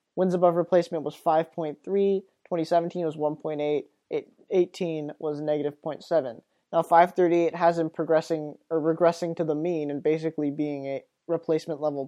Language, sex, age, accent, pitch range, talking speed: English, male, 20-39, American, 155-185 Hz, 130 wpm